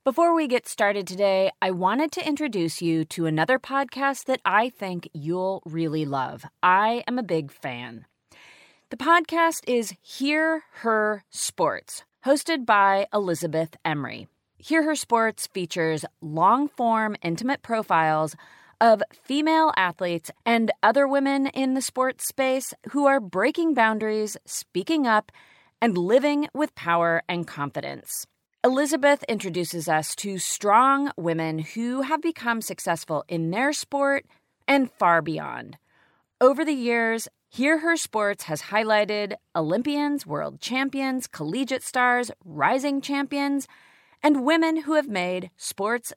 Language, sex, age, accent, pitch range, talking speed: English, female, 30-49, American, 185-280 Hz, 130 wpm